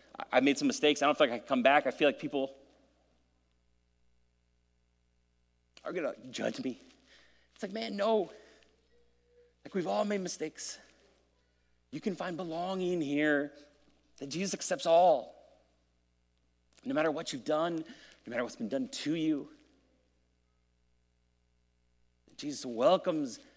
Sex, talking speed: male, 135 wpm